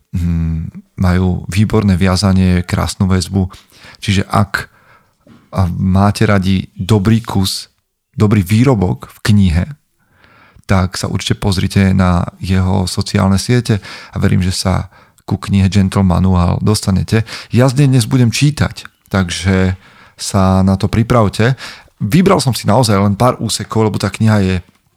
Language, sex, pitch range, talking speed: Slovak, male, 95-110 Hz, 125 wpm